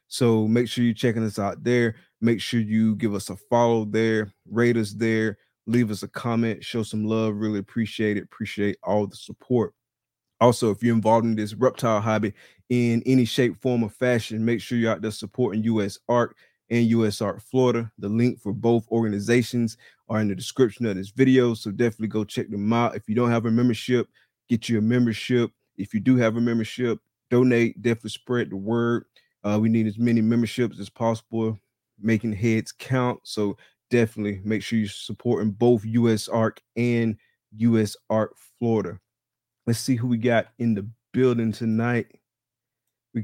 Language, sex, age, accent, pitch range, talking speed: English, male, 20-39, American, 110-120 Hz, 185 wpm